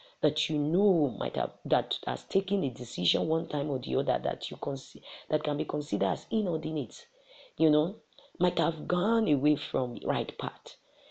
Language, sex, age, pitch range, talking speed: English, female, 40-59, 135-185 Hz, 190 wpm